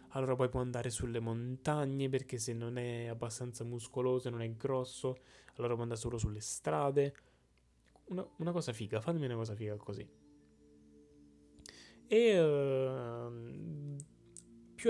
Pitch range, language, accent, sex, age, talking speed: 110-130 Hz, Italian, native, male, 20-39, 135 wpm